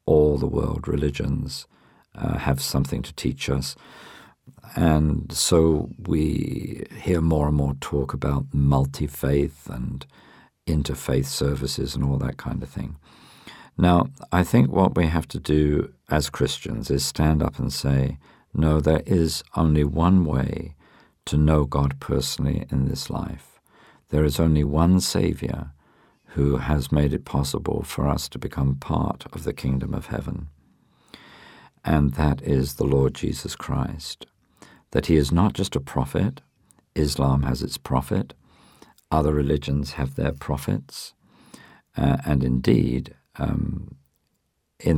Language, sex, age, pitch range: English, male, 50-69, 65-75 Hz